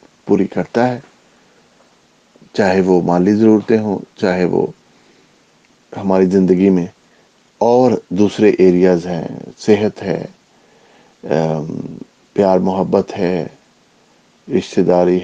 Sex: male